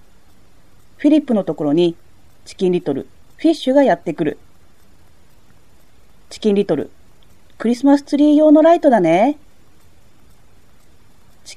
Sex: female